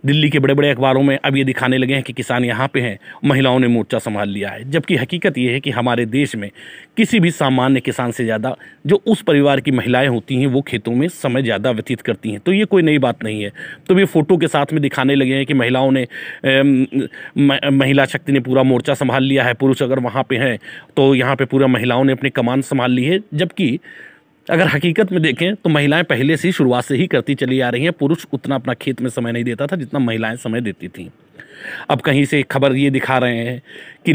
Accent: native